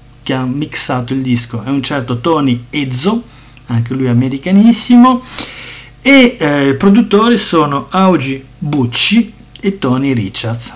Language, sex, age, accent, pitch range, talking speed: Italian, male, 50-69, native, 120-150 Hz, 110 wpm